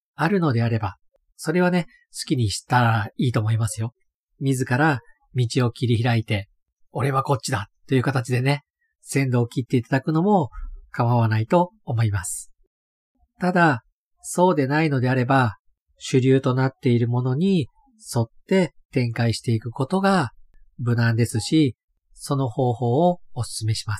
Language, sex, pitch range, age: Japanese, male, 115-145 Hz, 40-59